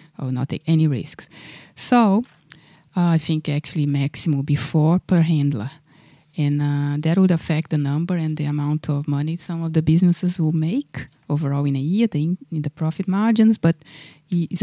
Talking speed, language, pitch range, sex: 180 wpm, English, 135-165 Hz, female